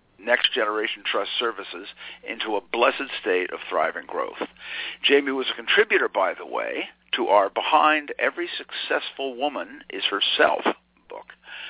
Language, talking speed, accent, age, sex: English, 140 wpm, American, 50-69, male